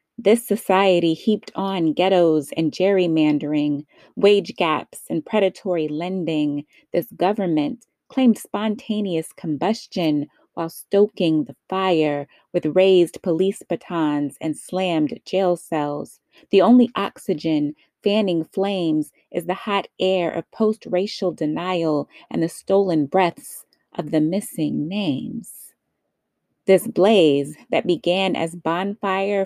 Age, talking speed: 30-49, 110 wpm